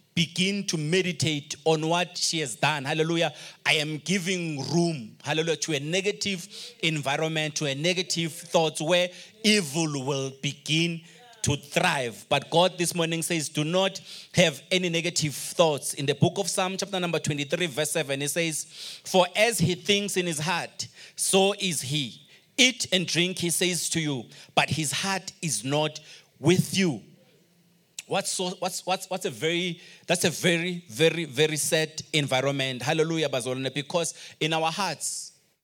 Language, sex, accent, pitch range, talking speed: English, male, South African, 155-185 Hz, 160 wpm